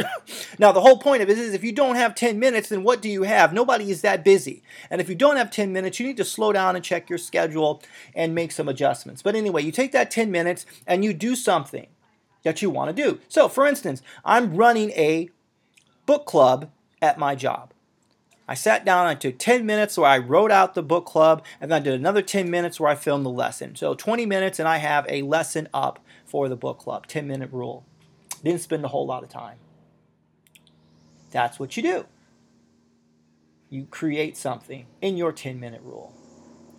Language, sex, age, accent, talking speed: English, male, 30-49, American, 210 wpm